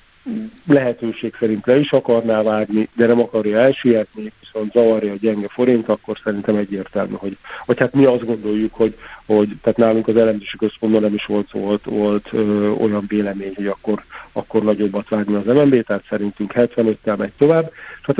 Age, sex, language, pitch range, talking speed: 50-69, male, Hungarian, 105-120 Hz, 175 wpm